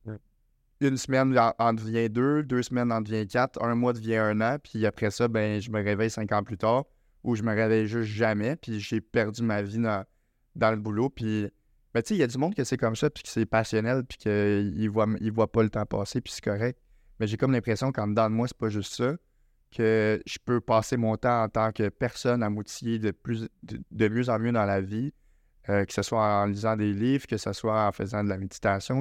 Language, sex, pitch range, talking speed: French, male, 105-120 Hz, 245 wpm